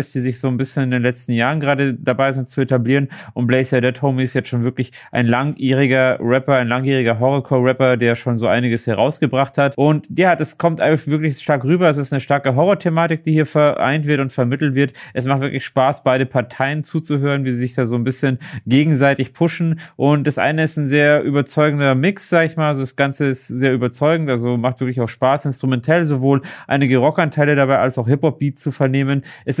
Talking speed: 210 wpm